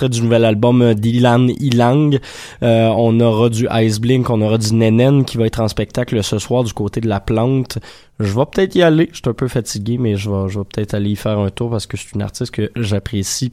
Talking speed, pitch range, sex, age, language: 245 wpm, 110-135 Hz, male, 20-39, French